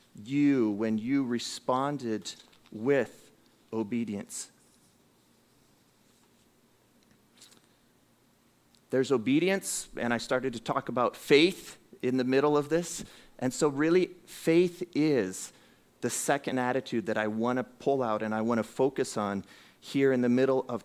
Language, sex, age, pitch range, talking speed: English, male, 40-59, 110-140 Hz, 130 wpm